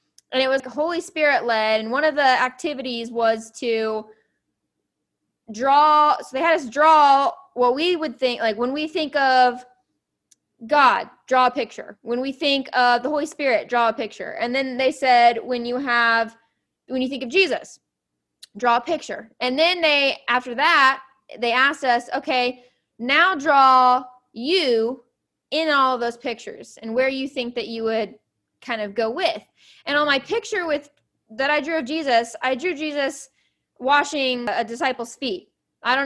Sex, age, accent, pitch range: female, 20-39, American, 240-300 Hz